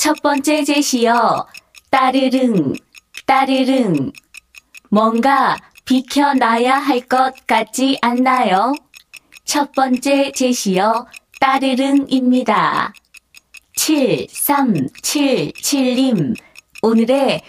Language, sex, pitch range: Korean, female, 235-270 Hz